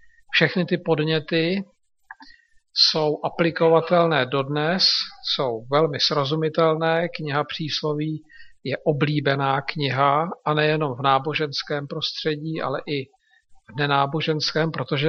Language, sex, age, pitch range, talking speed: Slovak, male, 50-69, 150-175 Hz, 95 wpm